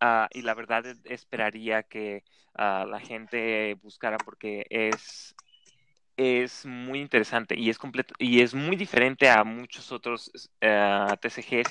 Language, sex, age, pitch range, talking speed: Spanish, male, 20-39, 110-130 Hz, 140 wpm